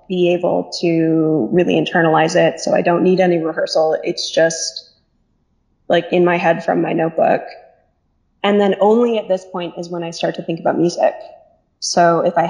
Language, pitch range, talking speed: English, 175-195 Hz, 180 wpm